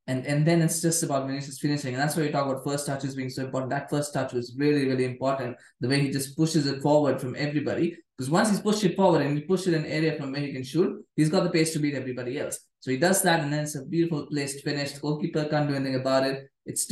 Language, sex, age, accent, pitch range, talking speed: English, male, 20-39, Indian, 135-170 Hz, 285 wpm